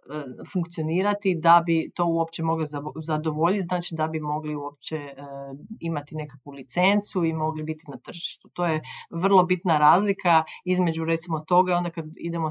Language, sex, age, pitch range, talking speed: Croatian, female, 30-49, 155-180 Hz, 155 wpm